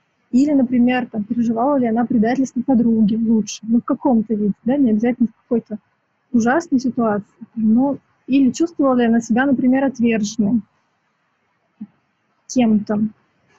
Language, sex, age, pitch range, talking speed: English, female, 20-39, 230-270 Hz, 135 wpm